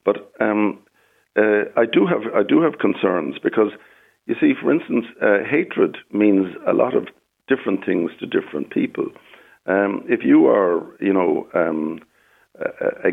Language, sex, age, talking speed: English, male, 60-79, 155 wpm